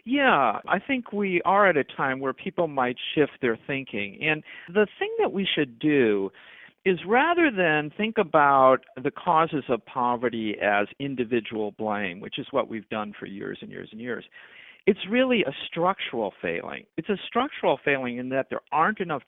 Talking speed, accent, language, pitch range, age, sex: 180 wpm, American, English, 115-160 Hz, 50-69, male